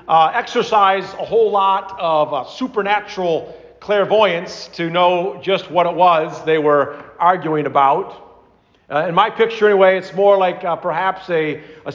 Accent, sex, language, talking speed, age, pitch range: American, male, English, 155 wpm, 40-59, 155-205 Hz